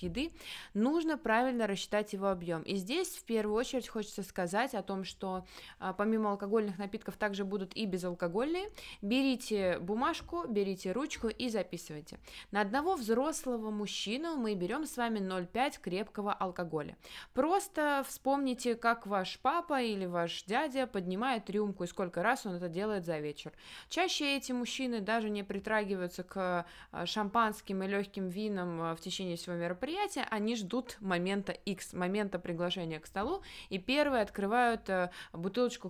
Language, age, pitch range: Russian, 20-39, 185-250 Hz